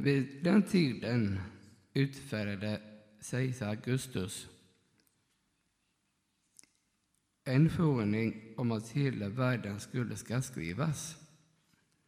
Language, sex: Swedish, male